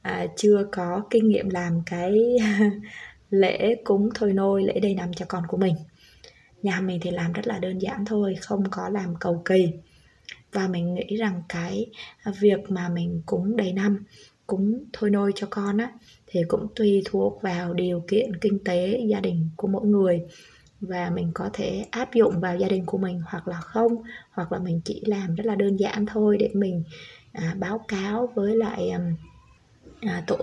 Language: Vietnamese